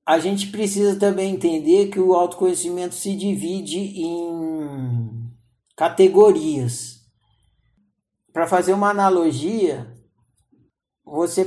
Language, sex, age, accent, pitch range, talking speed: Portuguese, male, 50-69, Brazilian, 160-200 Hz, 90 wpm